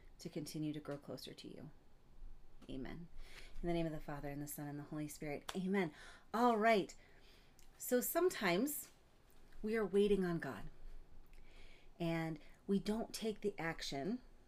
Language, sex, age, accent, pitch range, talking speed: English, female, 30-49, American, 155-215 Hz, 155 wpm